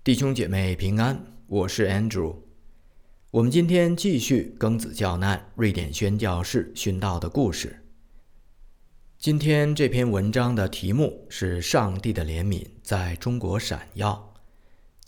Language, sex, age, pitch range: Chinese, male, 50-69, 85-120 Hz